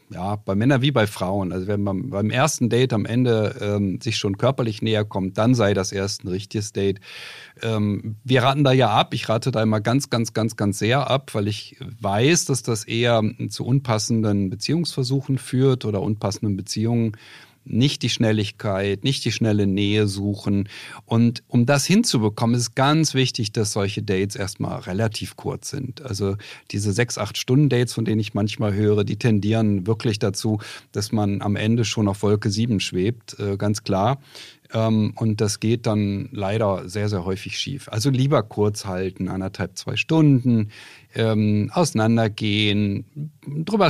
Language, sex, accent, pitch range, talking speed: German, male, German, 105-130 Hz, 165 wpm